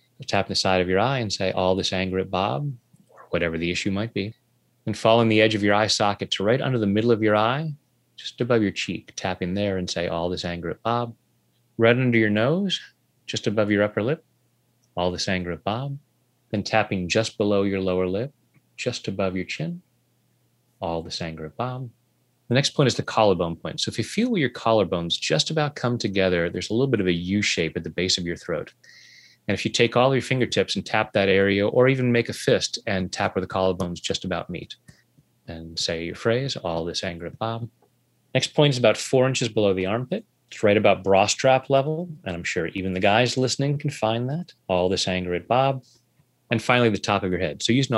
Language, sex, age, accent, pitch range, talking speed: English, male, 30-49, American, 95-125 Hz, 230 wpm